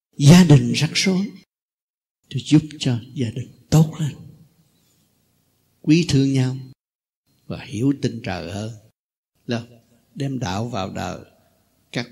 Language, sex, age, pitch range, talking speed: Vietnamese, male, 60-79, 120-160 Hz, 120 wpm